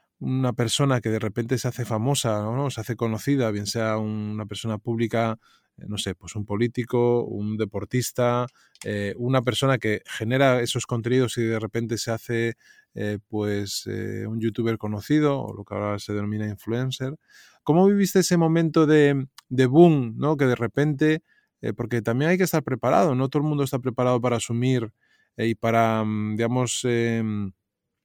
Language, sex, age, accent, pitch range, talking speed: Spanish, male, 20-39, Spanish, 110-130 Hz, 170 wpm